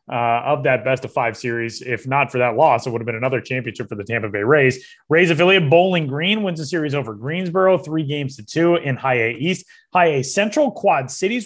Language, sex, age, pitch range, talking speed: English, male, 30-49, 125-165 Hz, 235 wpm